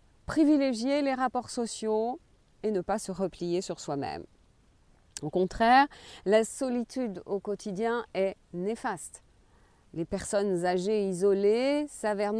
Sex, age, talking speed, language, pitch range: female, 40-59, 115 wpm, French, 180-250 Hz